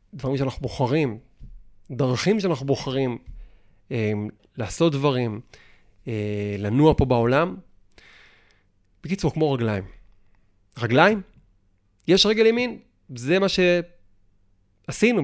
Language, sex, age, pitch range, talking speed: Hebrew, male, 30-49, 95-140 Hz, 90 wpm